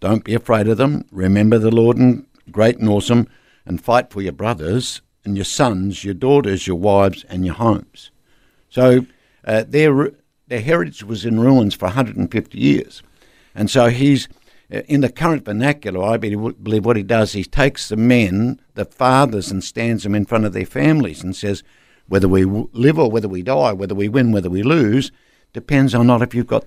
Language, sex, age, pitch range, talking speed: English, male, 60-79, 100-130 Hz, 190 wpm